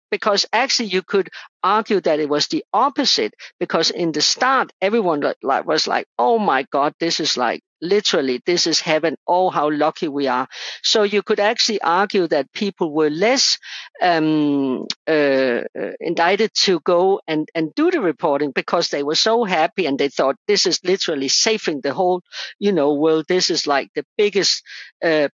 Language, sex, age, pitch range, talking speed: English, female, 50-69, 160-220 Hz, 175 wpm